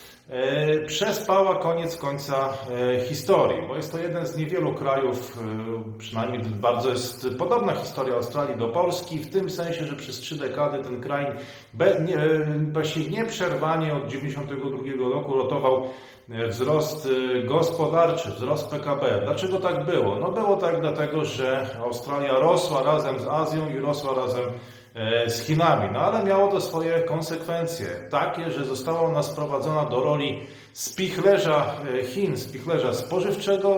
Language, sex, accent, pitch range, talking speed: Polish, male, native, 130-165 Hz, 130 wpm